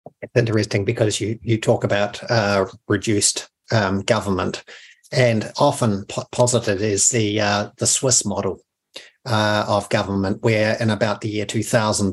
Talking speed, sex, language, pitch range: 145 wpm, male, English, 105-120 Hz